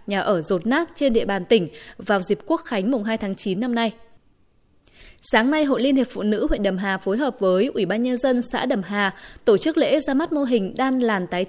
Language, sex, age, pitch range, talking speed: Vietnamese, female, 20-39, 195-265 Hz, 250 wpm